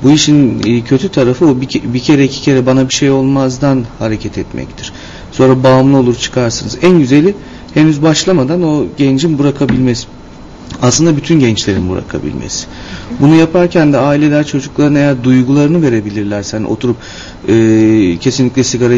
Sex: male